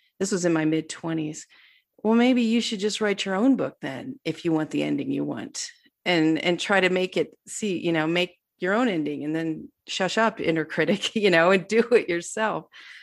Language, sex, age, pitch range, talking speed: English, female, 30-49, 175-220 Hz, 220 wpm